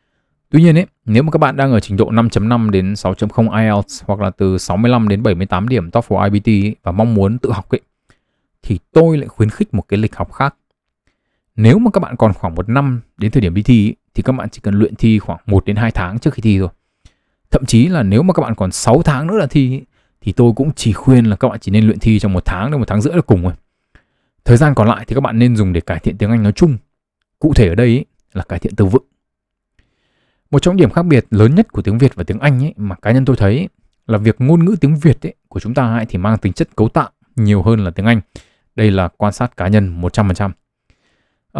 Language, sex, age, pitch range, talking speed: Vietnamese, male, 20-39, 105-135 Hz, 265 wpm